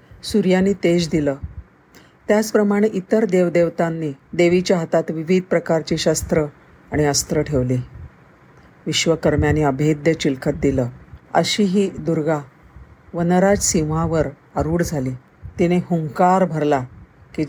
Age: 50-69